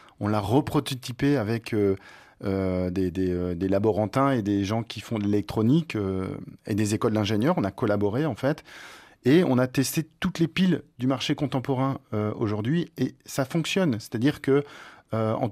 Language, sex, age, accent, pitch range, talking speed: French, male, 40-59, French, 110-145 Hz, 160 wpm